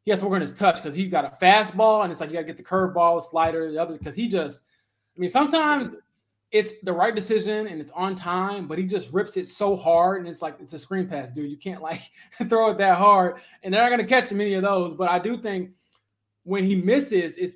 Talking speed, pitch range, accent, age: 260 wpm, 155-195 Hz, American, 20-39